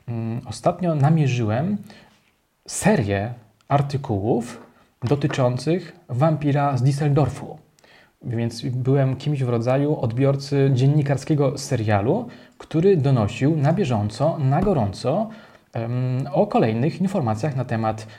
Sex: male